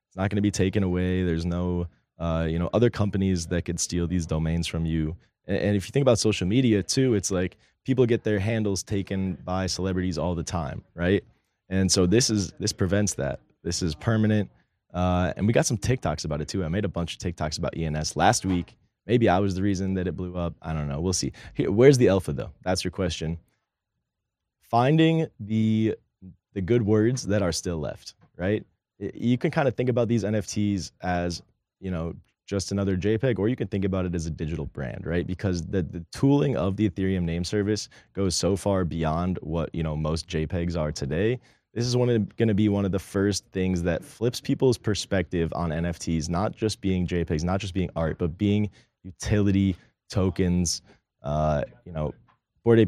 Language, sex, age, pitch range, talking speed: English, male, 20-39, 85-105 Hz, 205 wpm